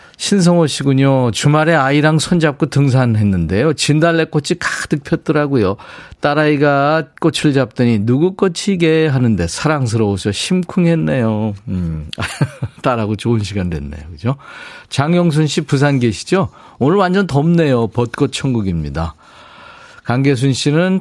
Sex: male